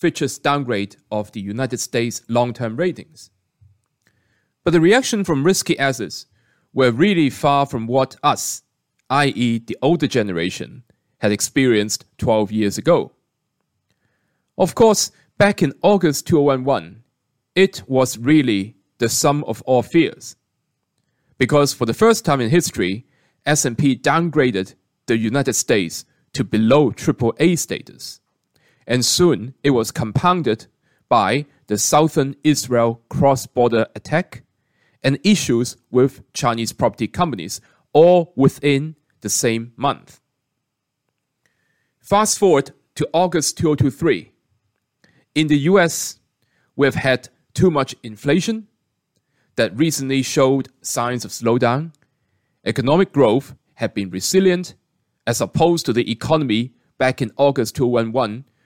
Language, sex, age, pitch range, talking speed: English, male, 30-49, 120-155 Hz, 115 wpm